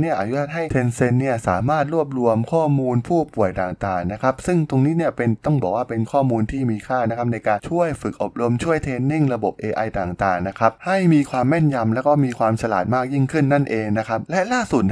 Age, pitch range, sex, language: 20-39, 110-140 Hz, male, Thai